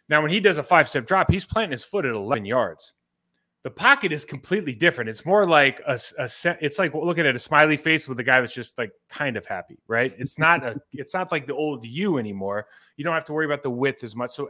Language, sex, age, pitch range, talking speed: English, male, 30-49, 125-155 Hz, 265 wpm